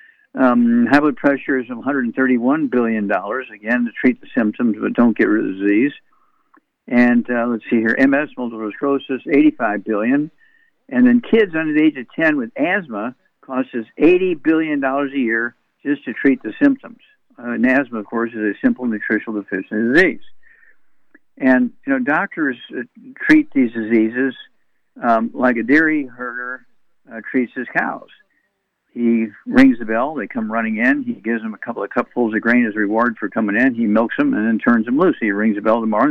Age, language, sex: 60-79, English, male